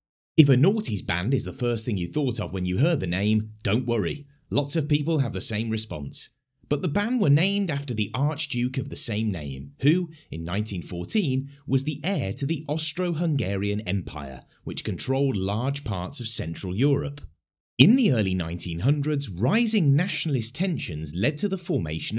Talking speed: 175 wpm